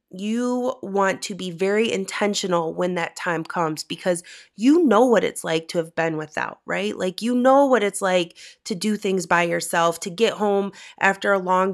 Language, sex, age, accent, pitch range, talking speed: English, female, 30-49, American, 170-205 Hz, 195 wpm